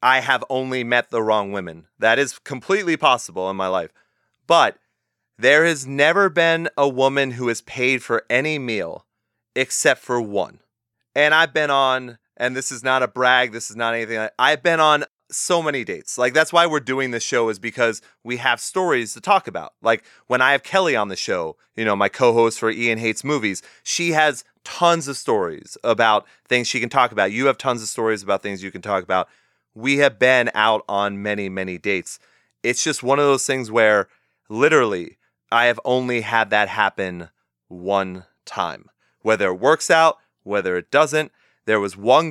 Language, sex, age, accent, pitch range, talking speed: English, male, 30-49, American, 110-140 Hz, 195 wpm